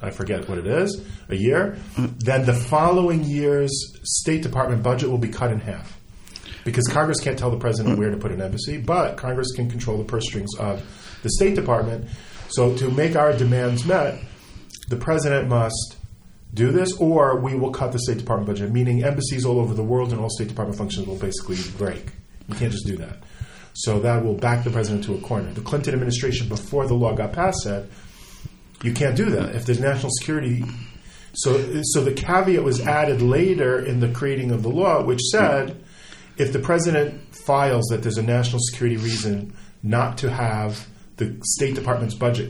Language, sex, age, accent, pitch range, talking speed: English, male, 40-59, American, 105-130 Hz, 190 wpm